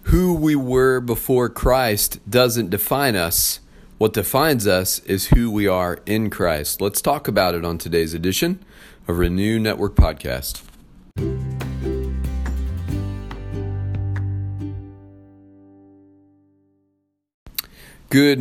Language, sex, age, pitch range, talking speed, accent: English, male, 40-59, 80-100 Hz, 95 wpm, American